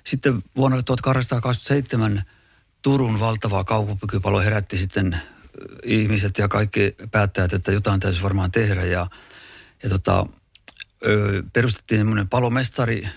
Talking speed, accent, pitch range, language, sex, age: 105 wpm, native, 95-115 Hz, Finnish, male, 50-69